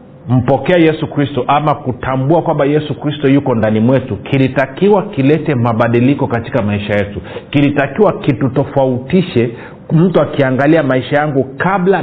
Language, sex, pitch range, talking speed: Swahili, male, 115-155 Hz, 125 wpm